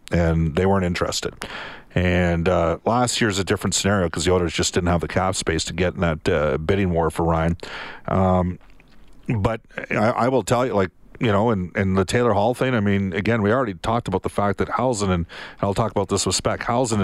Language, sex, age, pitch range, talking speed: English, male, 50-69, 90-115 Hz, 230 wpm